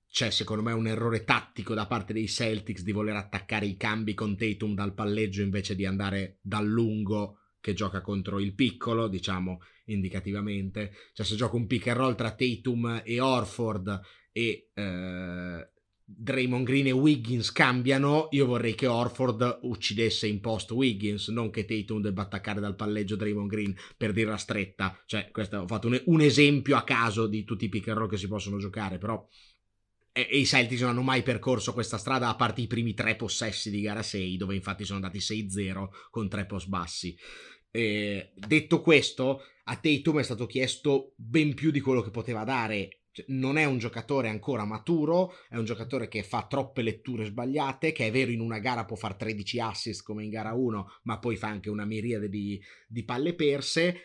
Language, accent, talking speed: Italian, native, 190 wpm